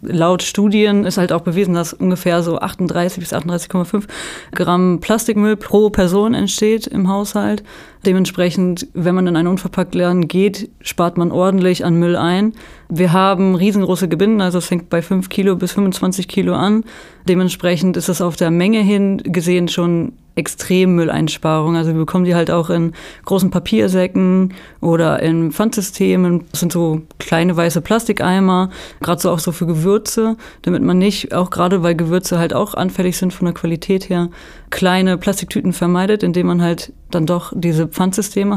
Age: 20-39